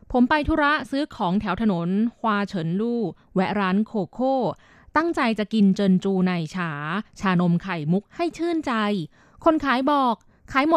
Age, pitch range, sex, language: 20-39, 185-250 Hz, female, Thai